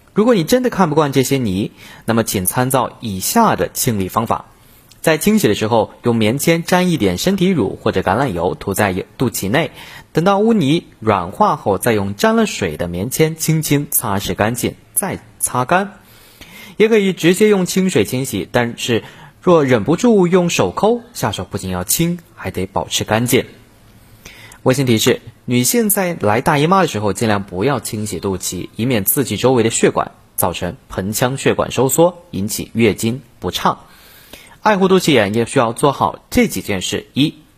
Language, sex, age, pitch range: Chinese, male, 30-49, 105-165 Hz